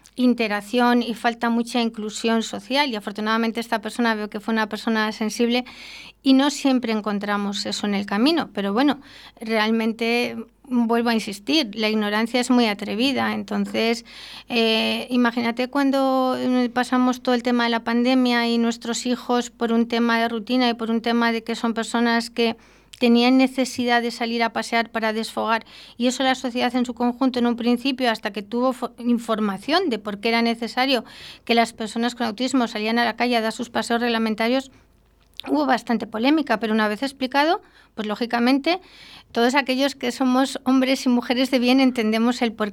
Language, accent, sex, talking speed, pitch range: Spanish, Spanish, female, 175 wpm, 225-250 Hz